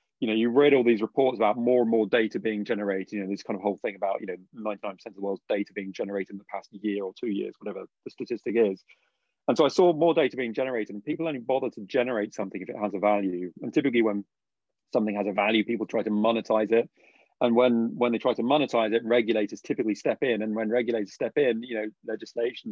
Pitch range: 105-125 Hz